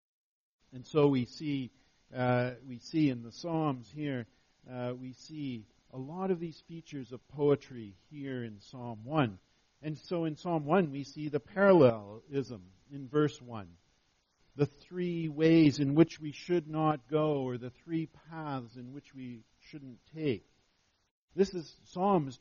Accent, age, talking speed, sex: American, 50-69, 155 wpm, male